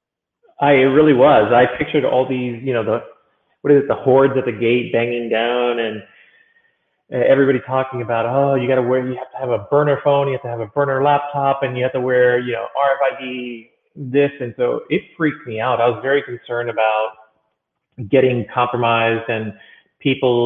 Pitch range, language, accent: 110-135 Hz, English, American